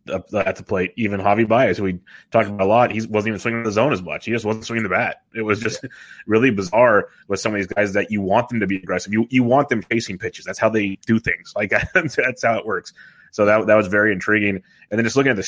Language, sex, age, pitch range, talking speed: English, male, 20-39, 100-115 Hz, 280 wpm